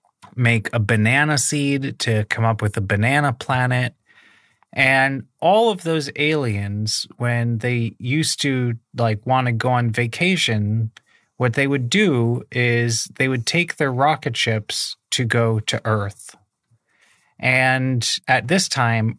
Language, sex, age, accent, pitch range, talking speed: English, male, 30-49, American, 115-140 Hz, 140 wpm